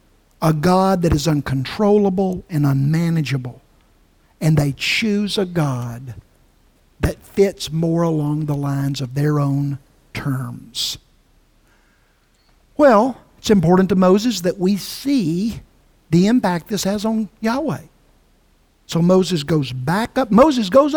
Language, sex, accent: English, male, American